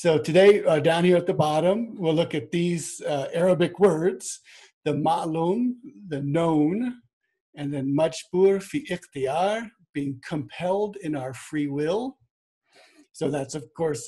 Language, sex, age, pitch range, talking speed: English, male, 60-79, 140-180 Hz, 145 wpm